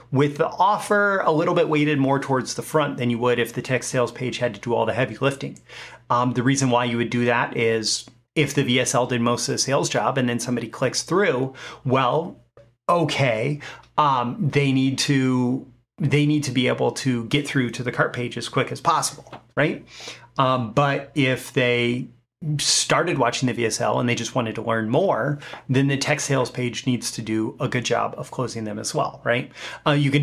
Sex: male